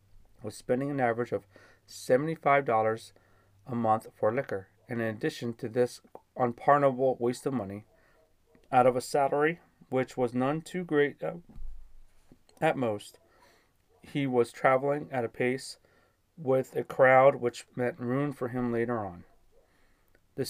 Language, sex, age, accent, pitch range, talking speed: English, male, 30-49, American, 110-140 Hz, 140 wpm